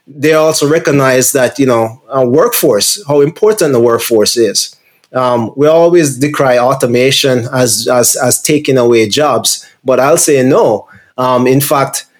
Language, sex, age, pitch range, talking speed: English, male, 30-49, 125-145 Hz, 150 wpm